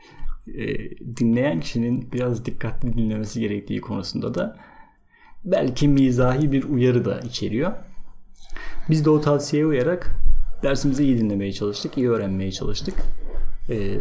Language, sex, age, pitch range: Turkish, male, 30-49, 110-135 Hz